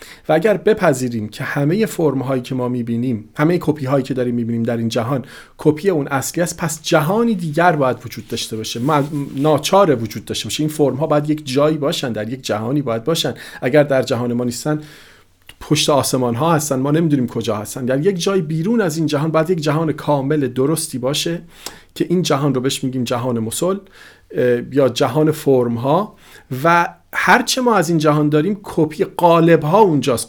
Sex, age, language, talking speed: male, 40-59, Persian, 180 wpm